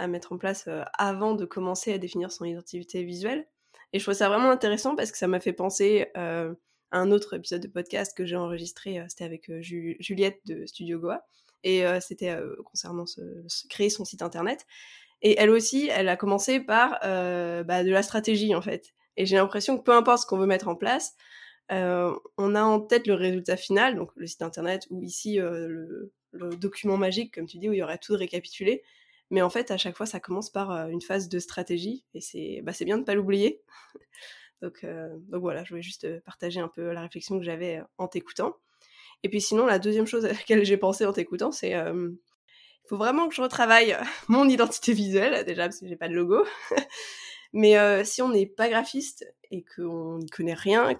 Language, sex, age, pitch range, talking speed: French, female, 20-39, 175-215 Hz, 215 wpm